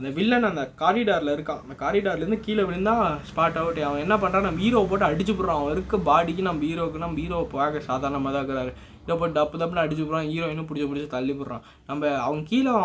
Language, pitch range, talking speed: Tamil, 145-190 Hz, 200 wpm